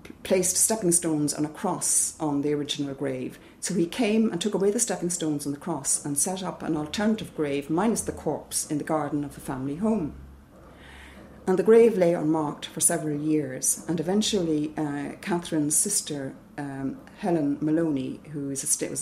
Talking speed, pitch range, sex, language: 175 wpm, 145-175 Hz, female, English